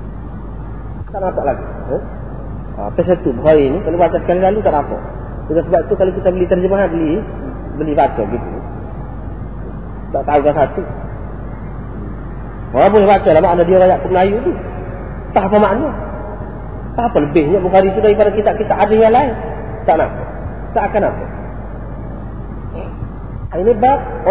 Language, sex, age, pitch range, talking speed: Malay, male, 30-49, 115-180 Hz, 150 wpm